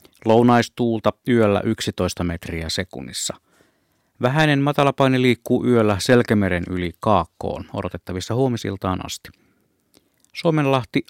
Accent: native